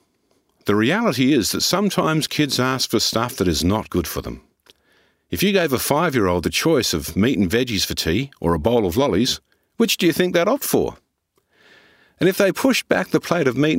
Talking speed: 215 wpm